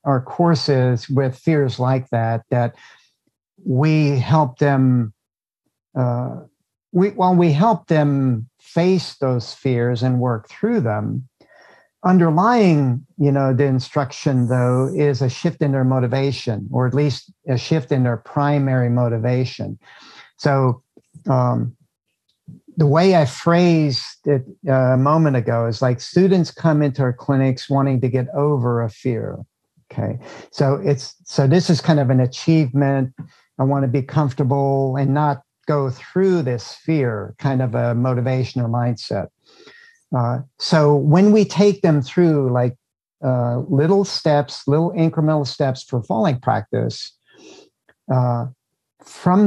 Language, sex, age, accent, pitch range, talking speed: English, male, 50-69, American, 125-155 Hz, 135 wpm